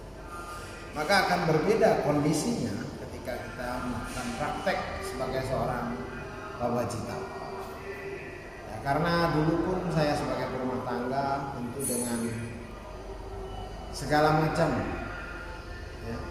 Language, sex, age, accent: Indonesian, male, 30-49, native